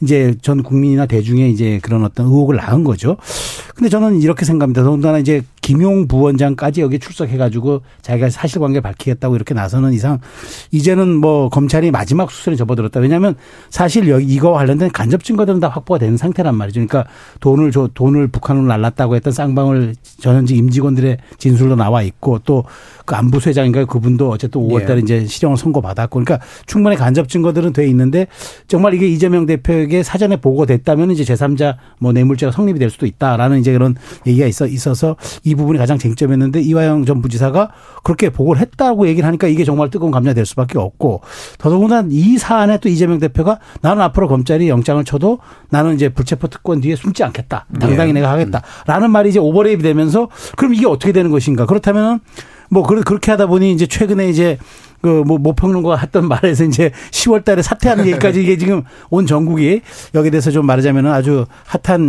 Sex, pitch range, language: male, 130-175 Hz, Korean